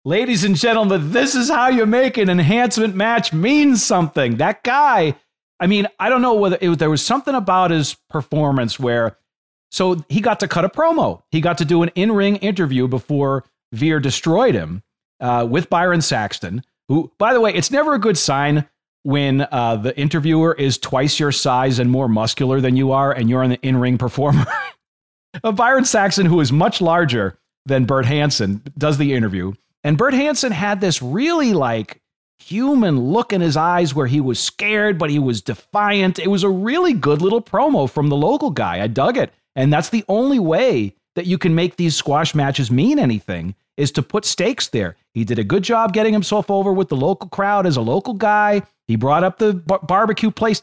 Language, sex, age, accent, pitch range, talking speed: English, male, 40-59, American, 135-210 Hz, 195 wpm